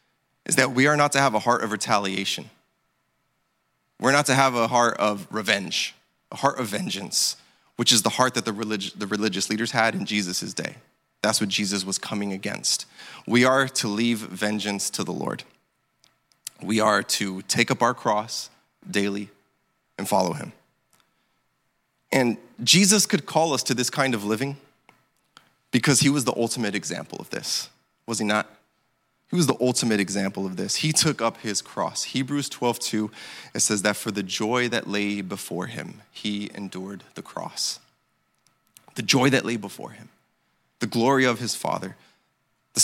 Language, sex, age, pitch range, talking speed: English, male, 20-39, 105-125 Hz, 170 wpm